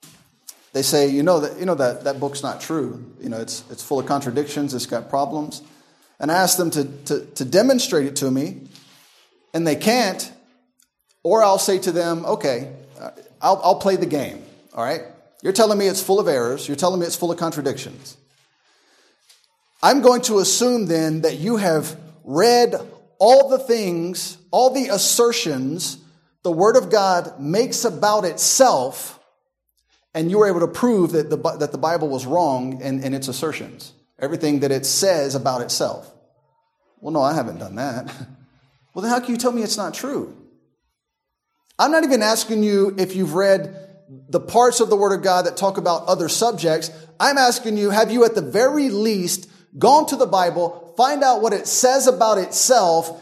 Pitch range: 145-220 Hz